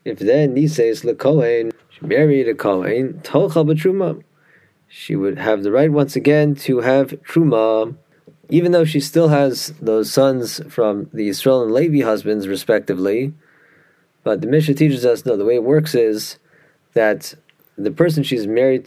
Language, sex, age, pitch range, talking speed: English, male, 30-49, 115-150 Hz, 160 wpm